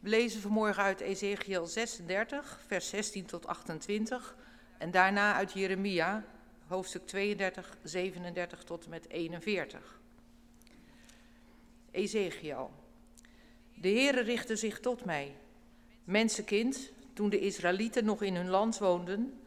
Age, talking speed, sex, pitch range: 50-69, 110 wpm, female, 180-230 Hz